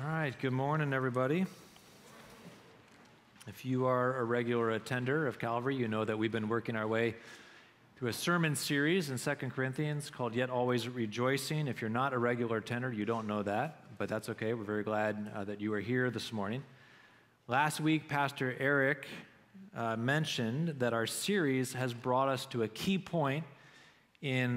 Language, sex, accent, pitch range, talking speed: English, male, American, 115-145 Hz, 175 wpm